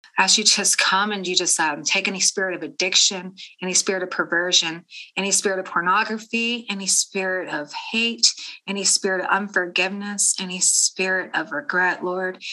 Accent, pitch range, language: American, 175-195 Hz, English